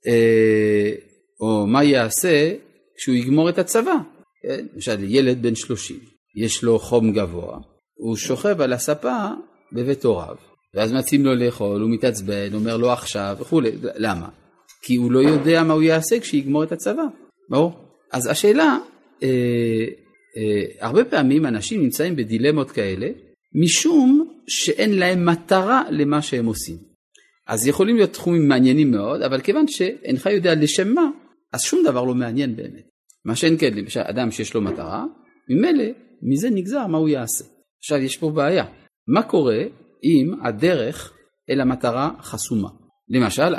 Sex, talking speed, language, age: male, 145 wpm, Hebrew, 40-59